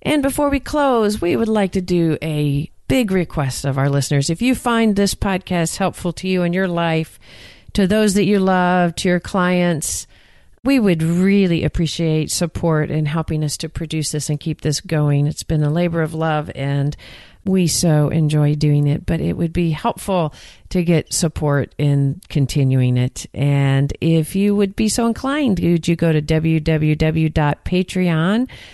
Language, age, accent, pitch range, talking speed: English, 40-59, American, 145-180 Hz, 175 wpm